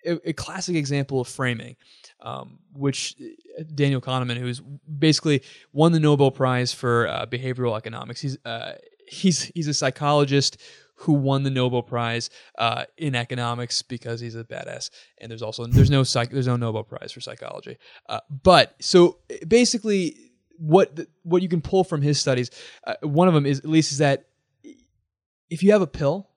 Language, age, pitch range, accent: English, 20-39, 130-165 Hz, American